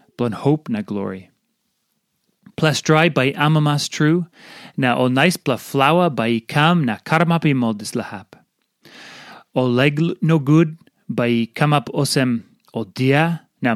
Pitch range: 125-175 Hz